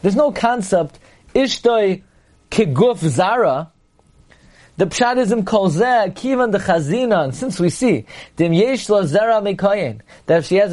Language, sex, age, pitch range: English, male, 30-49, 170-235 Hz